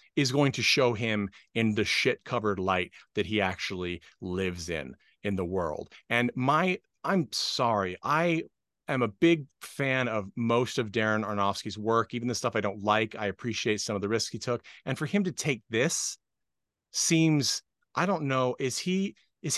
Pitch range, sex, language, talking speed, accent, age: 105-145 Hz, male, English, 185 wpm, American, 30-49